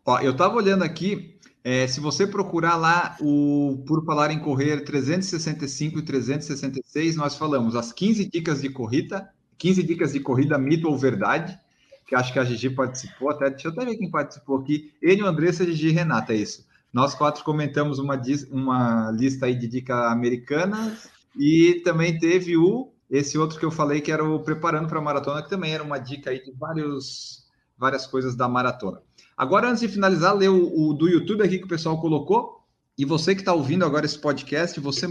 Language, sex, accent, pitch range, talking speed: Portuguese, male, Brazilian, 135-170 Hz, 195 wpm